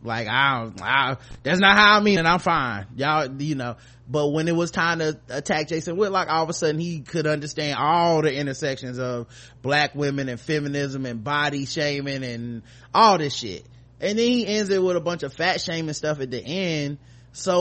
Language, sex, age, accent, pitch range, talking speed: English, male, 20-39, American, 130-180 Hz, 210 wpm